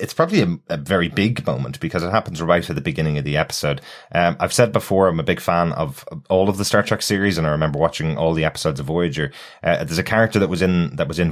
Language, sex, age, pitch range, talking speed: English, male, 20-39, 80-95 Hz, 270 wpm